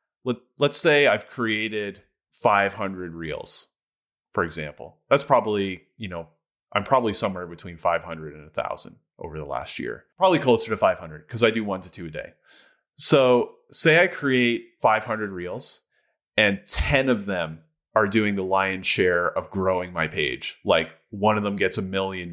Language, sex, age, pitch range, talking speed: English, male, 30-49, 95-125 Hz, 165 wpm